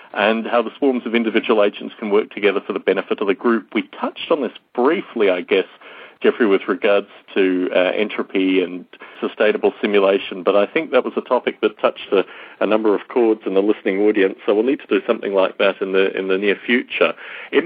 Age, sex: 40-59, male